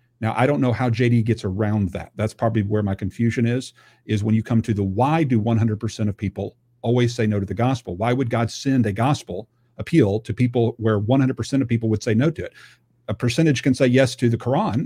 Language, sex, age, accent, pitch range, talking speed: English, male, 50-69, American, 115-135 Hz, 235 wpm